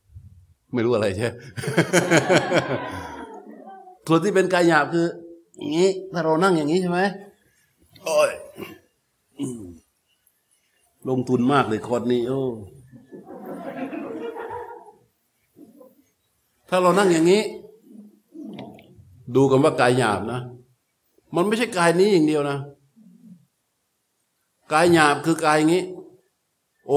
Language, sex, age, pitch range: Thai, male, 60-79, 115-165 Hz